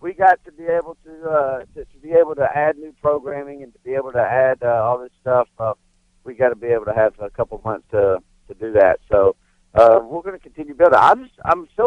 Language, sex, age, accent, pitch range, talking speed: English, male, 50-69, American, 125-180 Hz, 265 wpm